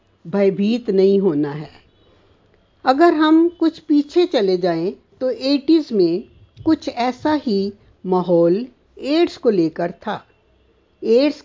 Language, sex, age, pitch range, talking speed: English, female, 60-79, 190-285 Hz, 115 wpm